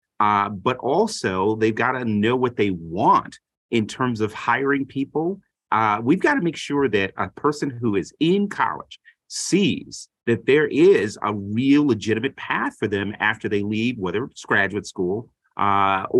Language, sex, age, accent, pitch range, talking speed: English, male, 30-49, American, 100-130 Hz, 170 wpm